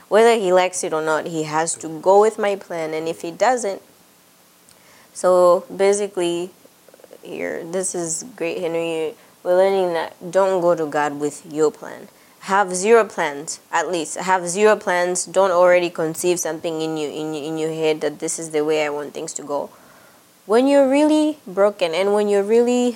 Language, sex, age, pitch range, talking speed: English, female, 20-39, 160-205 Hz, 185 wpm